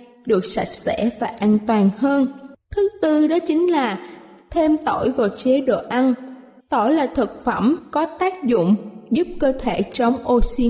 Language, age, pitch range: Vietnamese, 20-39, 235-300 Hz